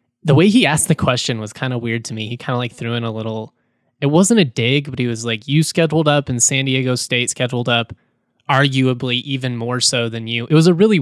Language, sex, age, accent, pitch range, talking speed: English, male, 20-39, American, 120-155 Hz, 255 wpm